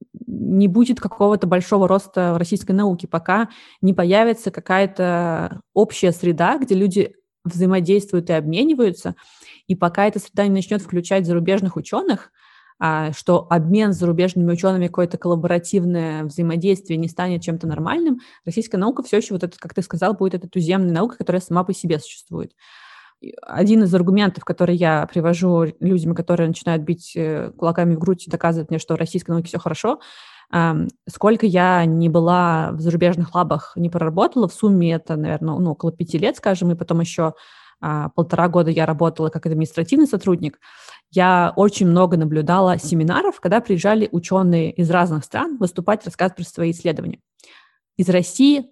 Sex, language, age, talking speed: female, Russian, 20-39, 155 wpm